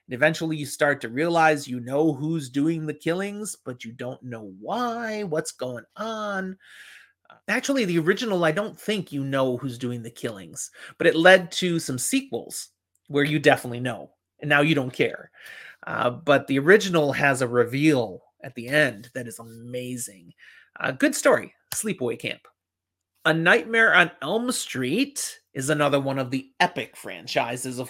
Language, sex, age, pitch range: English, male, 30-49, 125-180 Hz